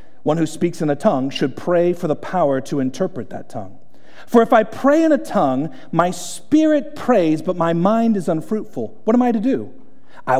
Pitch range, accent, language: 135-185 Hz, American, English